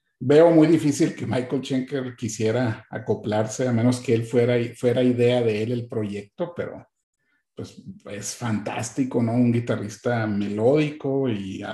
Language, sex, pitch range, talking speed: Spanish, male, 115-145 Hz, 150 wpm